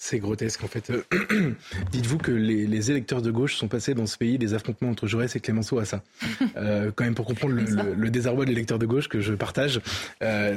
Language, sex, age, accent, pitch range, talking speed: French, male, 20-39, French, 115-145 Hz, 240 wpm